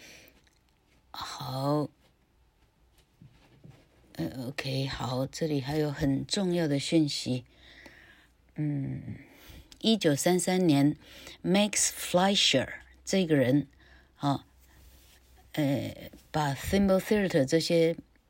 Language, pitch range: Chinese, 130-165 Hz